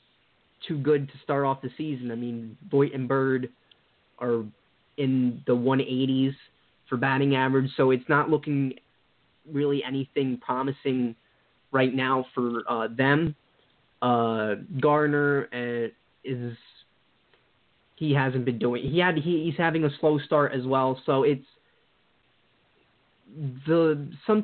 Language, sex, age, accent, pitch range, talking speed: English, male, 20-39, American, 125-150 Hz, 130 wpm